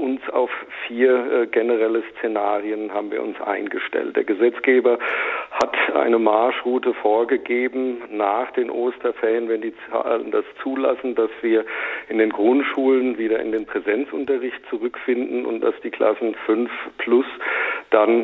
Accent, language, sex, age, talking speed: German, German, male, 50-69, 135 wpm